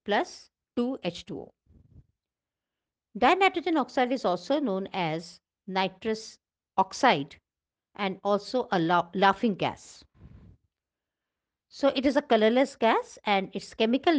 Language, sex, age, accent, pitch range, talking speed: English, female, 50-69, Indian, 175-235 Hz, 100 wpm